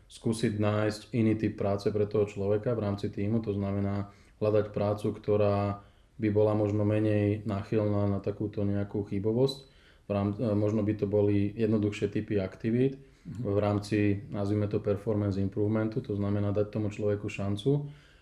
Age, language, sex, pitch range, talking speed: 20-39, Slovak, male, 100-110 Hz, 150 wpm